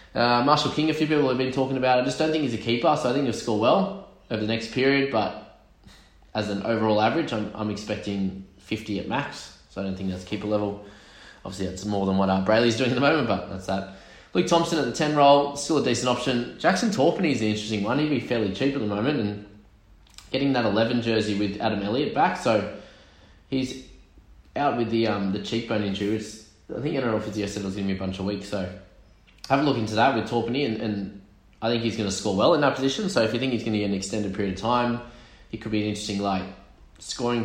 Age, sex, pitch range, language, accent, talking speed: 20-39, male, 95-115 Hz, English, Australian, 245 wpm